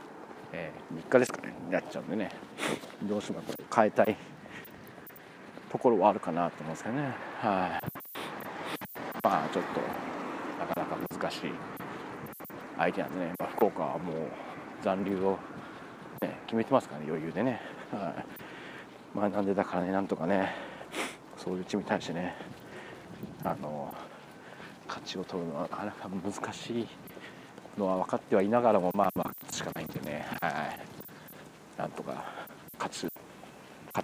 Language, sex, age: Japanese, male, 40-59